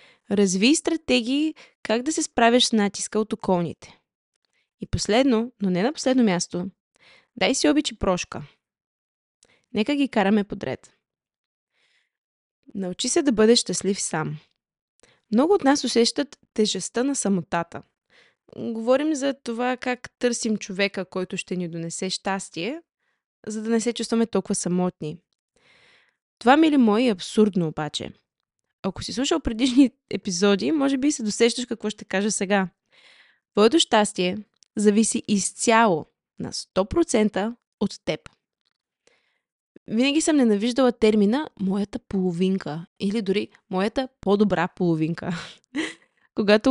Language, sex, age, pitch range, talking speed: Bulgarian, female, 20-39, 190-255 Hz, 120 wpm